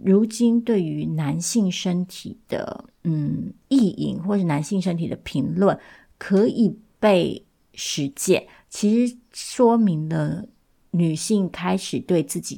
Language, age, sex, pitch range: Chinese, 30-49, female, 155-205 Hz